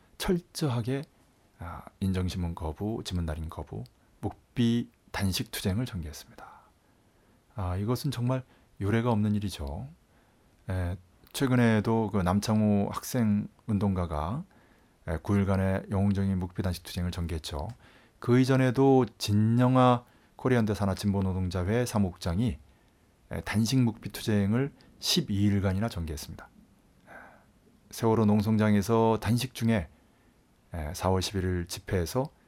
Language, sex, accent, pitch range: Korean, male, native, 90-115 Hz